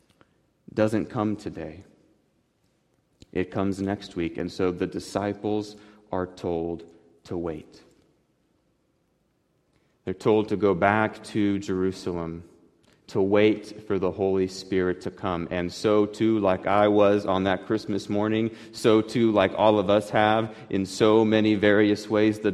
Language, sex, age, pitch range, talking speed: English, male, 30-49, 90-105 Hz, 140 wpm